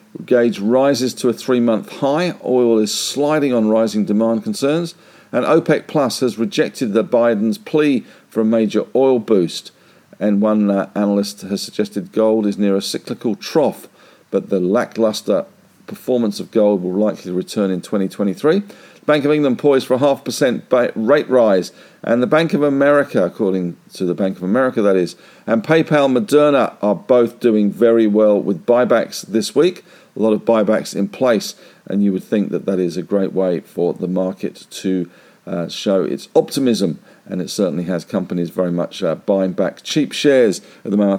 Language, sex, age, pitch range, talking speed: English, male, 50-69, 100-125 Hz, 180 wpm